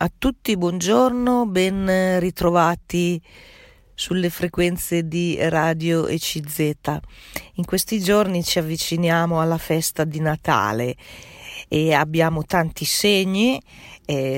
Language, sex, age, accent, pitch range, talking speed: Italian, female, 40-59, native, 150-175 Hz, 100 wpm